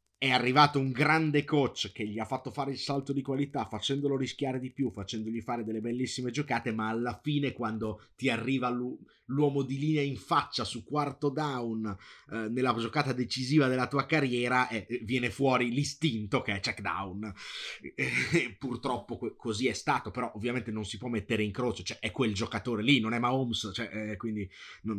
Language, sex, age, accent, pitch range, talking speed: Italian, male, 30-49, native, 105-125 Hz, 180 wpm